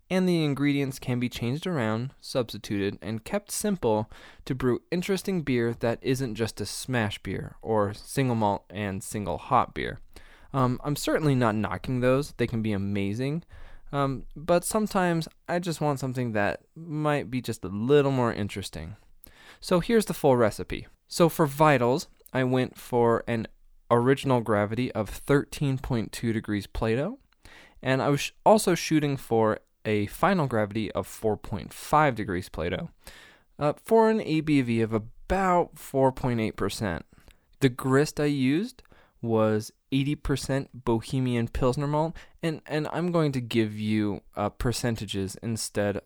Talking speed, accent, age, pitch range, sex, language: 140 wpm, American, 20-39, 110-145 Hz, male, English